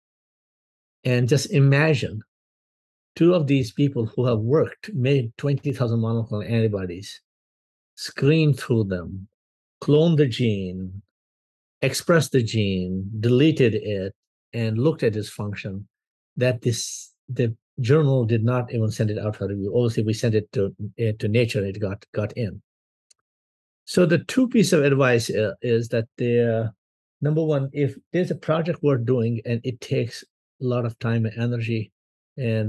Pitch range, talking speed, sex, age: 110-140 Hz, 150 wpm, male, 50-69